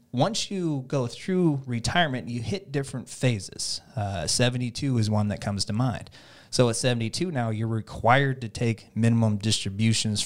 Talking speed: 160 wpm